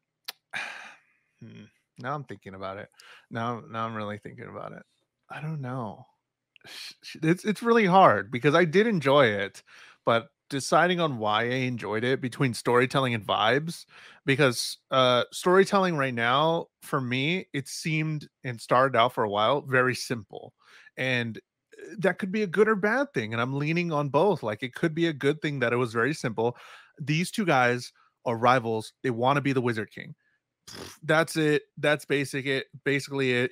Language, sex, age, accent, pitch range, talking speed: English, male, 30-49, American, 125-165 Hz, 175 wpm